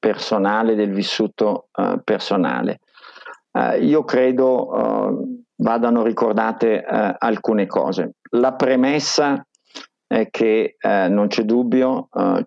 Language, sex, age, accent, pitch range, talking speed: Italian, male, 50-69, native, 105-135 Hz, 90 wpm